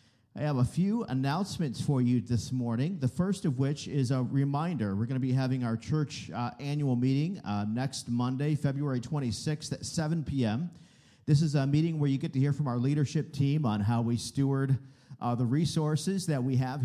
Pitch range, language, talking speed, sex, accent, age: 120-145 Hz, English, 205 wpm, male, American, 50-69